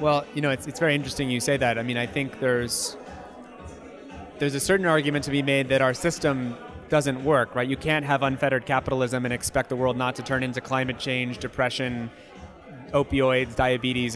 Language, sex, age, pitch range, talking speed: English, male, 30-49, 130-150 Hz, 195 wpm